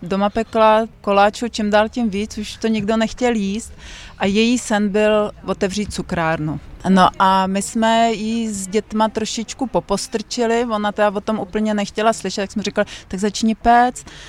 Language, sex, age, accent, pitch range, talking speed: Czech, female, 30-49, native, 185-215 Hz, 170 wpm